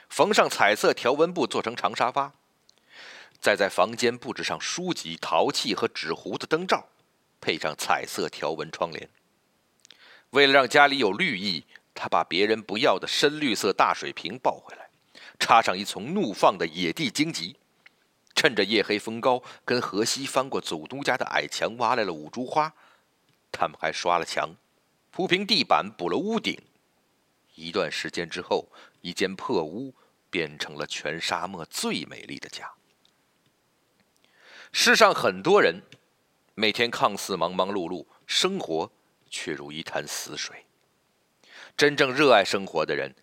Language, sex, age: Chinese, male, 50-69